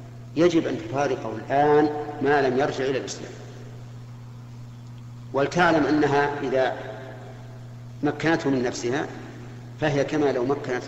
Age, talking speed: 50-69, 105 wpm